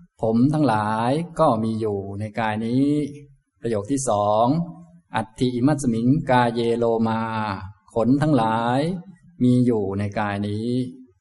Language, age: Thai, 20-39